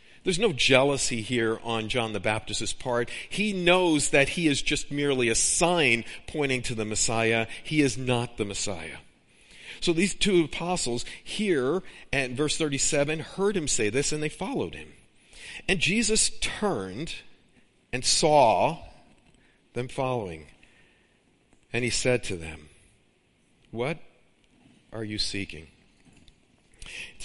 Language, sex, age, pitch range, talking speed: English, male, 50-69, 105-140 Hz, 130 wpm